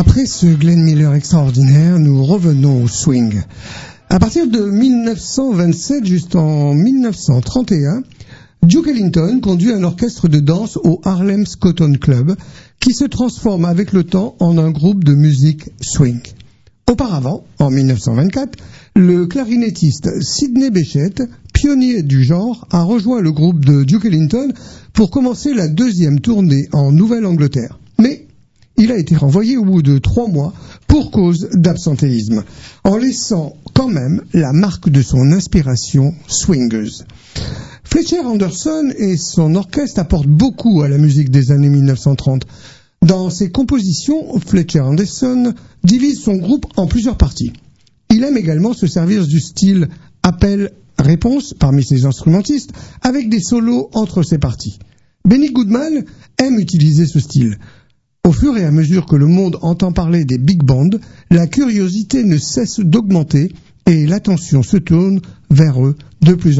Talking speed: 140 wpm